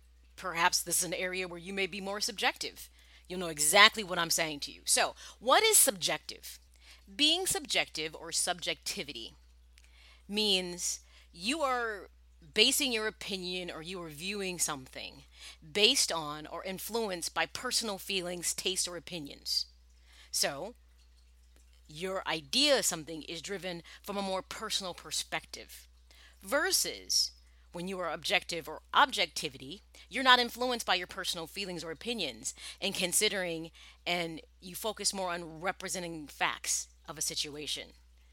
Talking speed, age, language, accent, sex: 140 wpm, 30-49, English, American, female